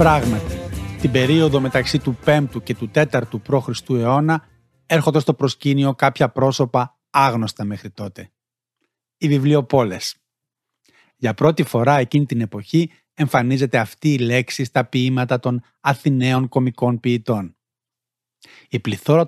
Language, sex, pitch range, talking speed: Greek, male, 120-145 Hz, 120 wpm